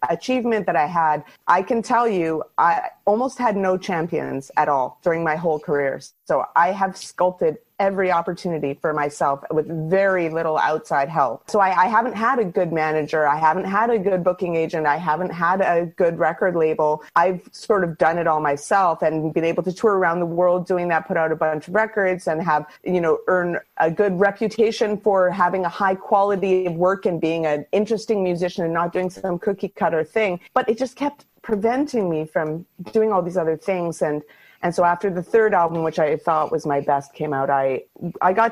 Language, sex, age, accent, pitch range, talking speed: English, female, 30-49, American, 155-195 Hz, 210 wpm